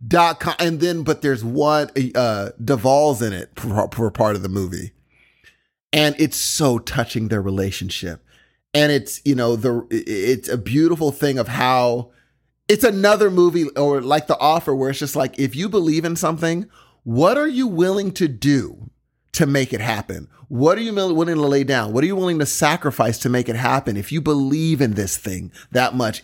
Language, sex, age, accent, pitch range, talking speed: English, male, 30-49, American, 125-180 Hz, 195 wpm